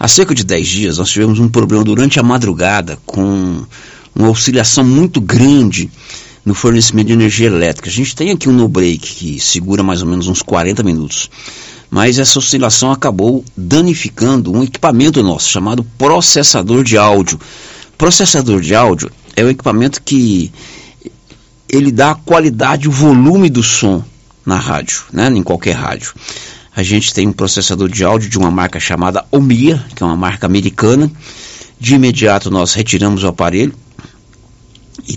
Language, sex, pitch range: Portuguese, male, 95-135 Hz